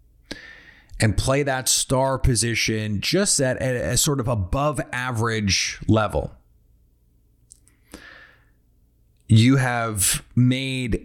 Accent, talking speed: American, 85 wpm